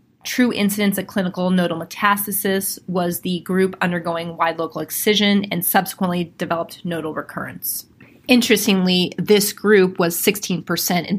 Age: 30-49